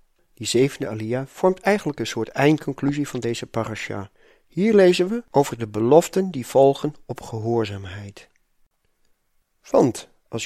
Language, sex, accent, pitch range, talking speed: Dutch, male, Dutch, 115-165 Hz, 130 wpm